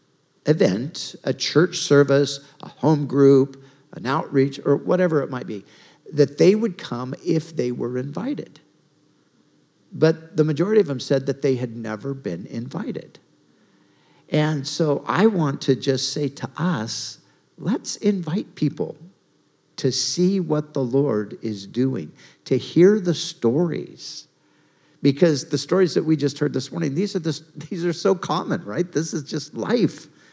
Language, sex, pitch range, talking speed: English, male, 125-170 Hz, 150 wpm